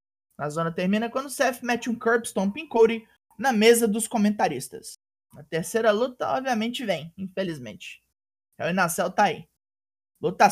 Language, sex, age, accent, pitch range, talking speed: Portuguese, male, 20-39, Brazilian, 165-245 Hz, 155 wpm